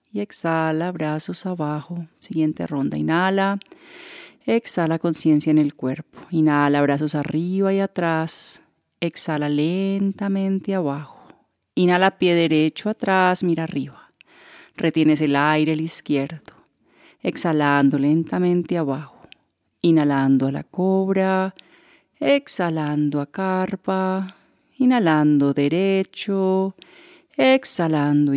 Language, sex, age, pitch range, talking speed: Spanish, female, 40-59, 155-195 Hz, 95 wpm